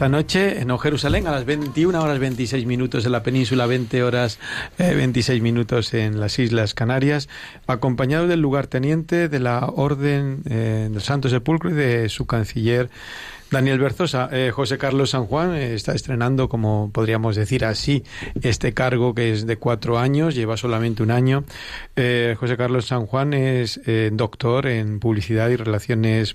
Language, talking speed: Spanish, 170 wpm